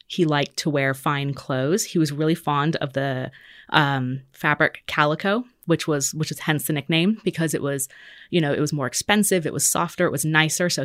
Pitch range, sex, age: 140-165 Hz, female, 20-39